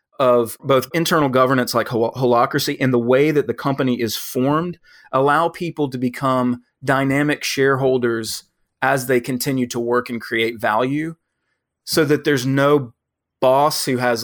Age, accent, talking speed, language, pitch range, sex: 30-49, American, 150 wpm, English, 120-145 Hz, male